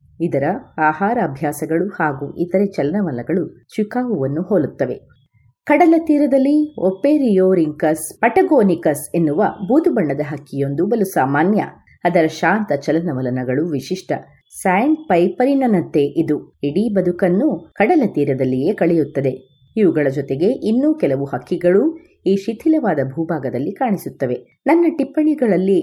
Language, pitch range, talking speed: Kannada, 150-230 Hz, 95 wpm